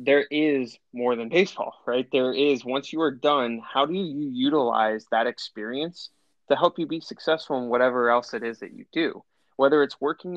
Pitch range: 115-140 Hz